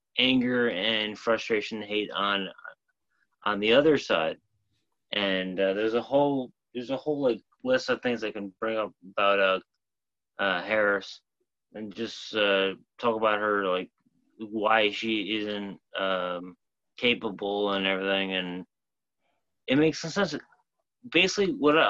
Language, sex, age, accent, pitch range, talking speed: English, male, 30-49, American, 100-130 Hz, 135 wpm